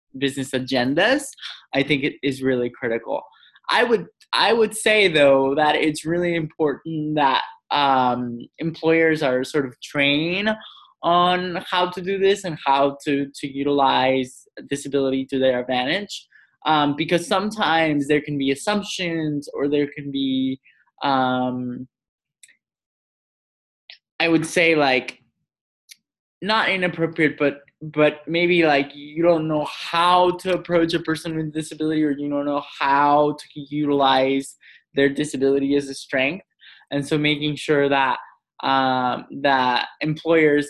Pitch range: 135-165 Hz